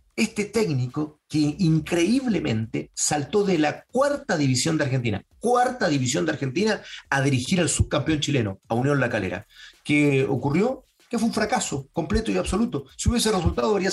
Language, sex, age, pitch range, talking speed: Spanish, male, 40-59, 125-175 Hz, 160 wpm